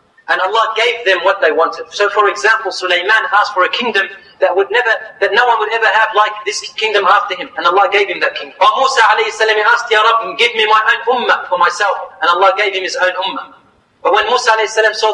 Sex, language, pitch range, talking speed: male, English, 195-250 Hz, 230 wpm